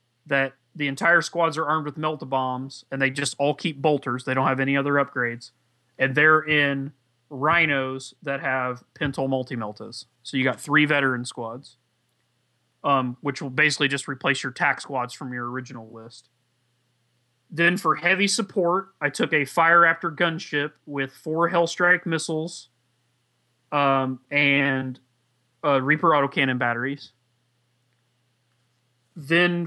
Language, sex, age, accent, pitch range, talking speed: English, male, 30-49, American, 125-155 Hz, 140 wpm